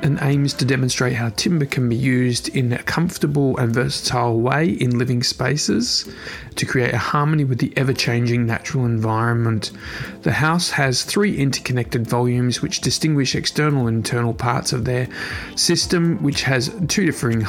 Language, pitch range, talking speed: English, 120-145 Hz, 160 wpm